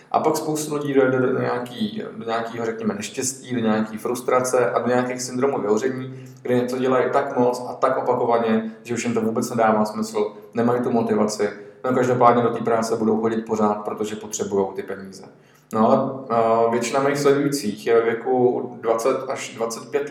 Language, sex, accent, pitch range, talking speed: Czech, male, native, 110-125 Hz, 180 wpm